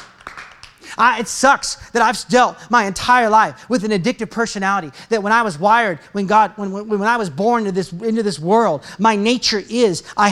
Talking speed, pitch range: 205 wpm, 215-275 Hz